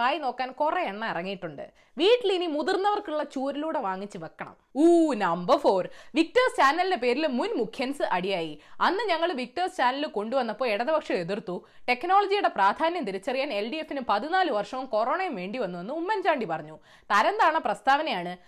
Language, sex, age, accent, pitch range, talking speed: Malayalam, female, 20-39, native, 210-330 Hz, 60 wpm